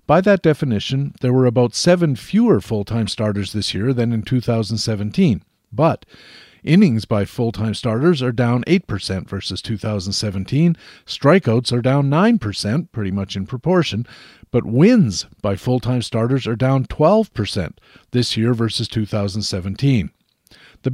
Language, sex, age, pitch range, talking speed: English, male, 50-69, 110-135 Hz, 130 wpm